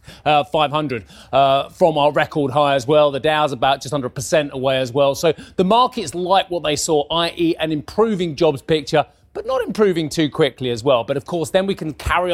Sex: male